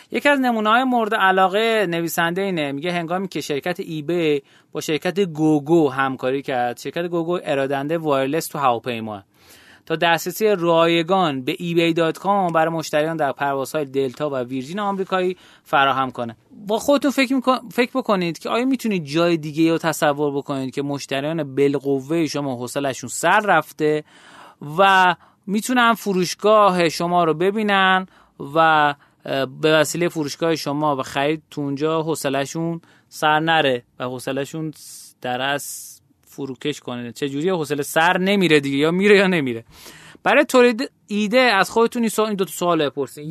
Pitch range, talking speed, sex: 140-185 Hz, 145 wpm, male